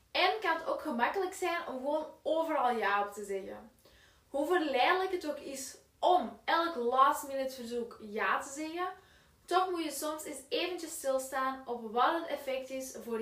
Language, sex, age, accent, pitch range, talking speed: Dutch, female, 10-29, Dutch, 240-305 Hz, 175 wpm